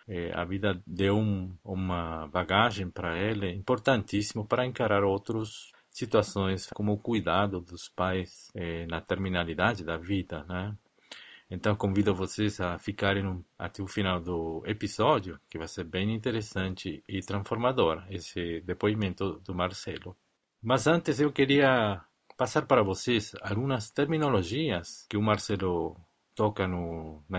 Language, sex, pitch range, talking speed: Portuguese, male, 90-105 Hz, 125 wpm